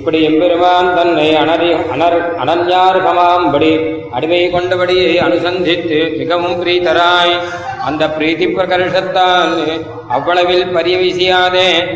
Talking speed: 75 wpm